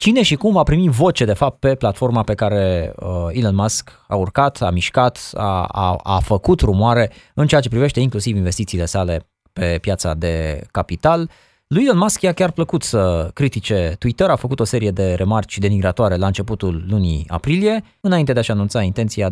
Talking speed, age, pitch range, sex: 185 wpm, 20-39, 90-145 Hz, male